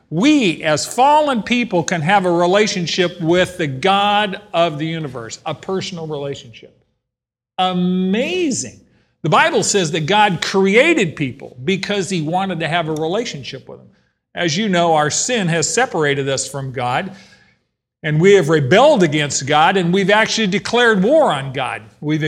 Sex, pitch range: male, 155-200 Hz